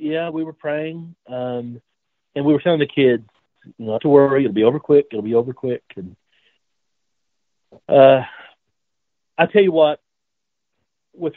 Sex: male